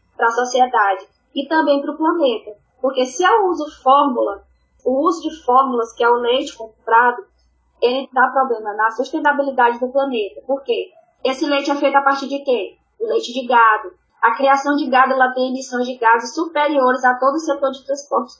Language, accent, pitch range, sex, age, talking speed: Portuguese, Brazilian, 235-280 Hz, female, 10-29, 190 wpm